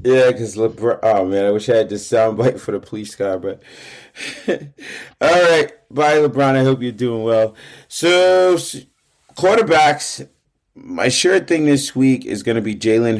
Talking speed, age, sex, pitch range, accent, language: 160 wpm, 30-49, male, 105-135 Hz, American, English